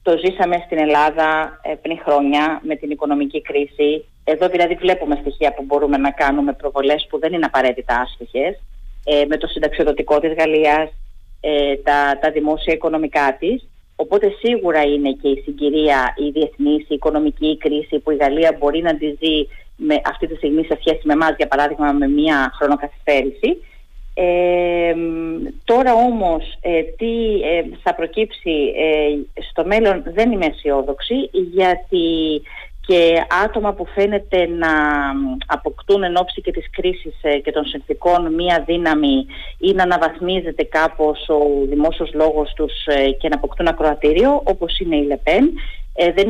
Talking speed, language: 135 wpm, Greek